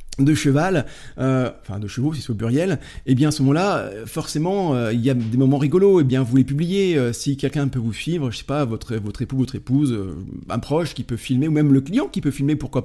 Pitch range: 120-150 Hz